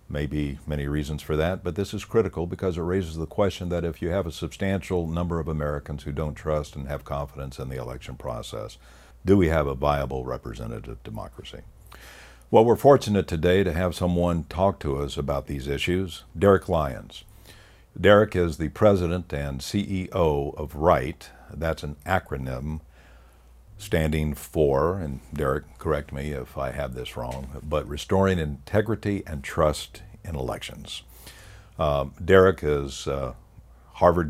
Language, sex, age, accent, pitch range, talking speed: English, male, 60-79, American, 70-90 Hz, 160 wpm